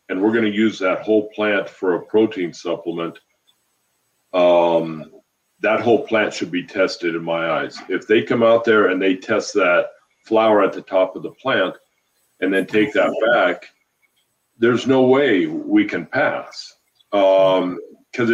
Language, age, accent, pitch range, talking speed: English, 50-69, American, 95-110 Hz, 165 wpm